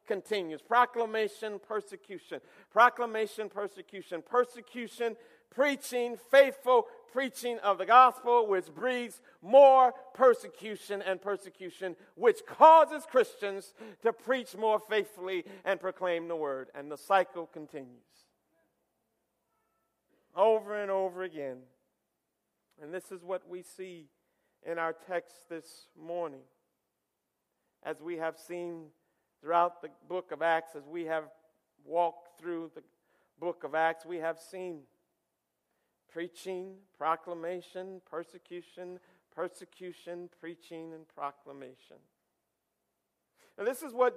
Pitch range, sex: 170-230 Hz, male